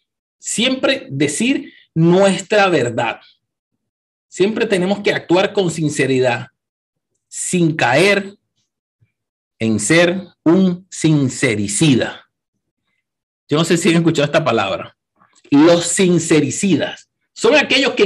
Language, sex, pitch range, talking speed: Spanish, male, 150-230 Hz, 95 wpm